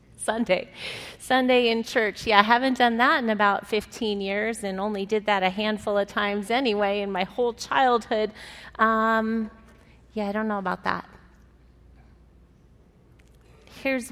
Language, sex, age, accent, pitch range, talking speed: English, female, 30-49, American, 200-250 Hz, 145 wpm